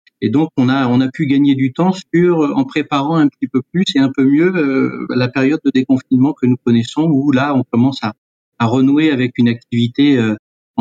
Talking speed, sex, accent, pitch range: 220 wpm, male, French, 130-155 Hz